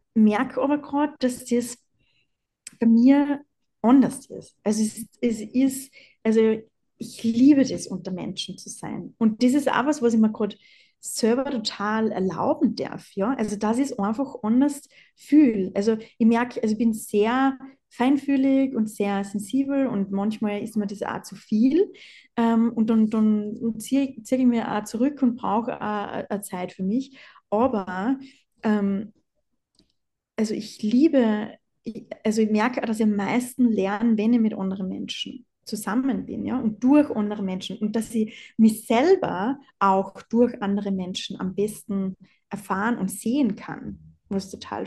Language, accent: German, German